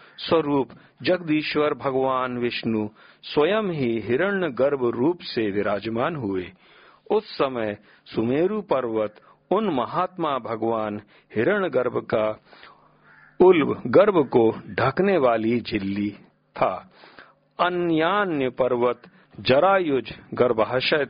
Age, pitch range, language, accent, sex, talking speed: 50-69, 105-150 Hz, Hindi, native, male, 90 wpm